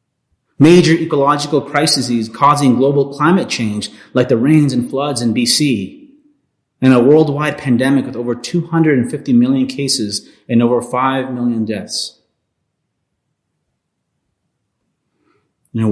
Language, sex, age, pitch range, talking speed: English, male, 30-49, 120-150 Hz, 110 wpm